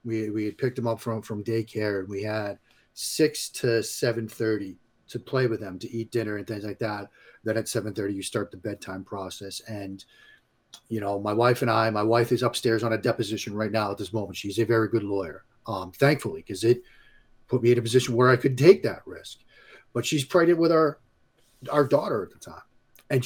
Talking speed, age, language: 220 wpm, 40-59, English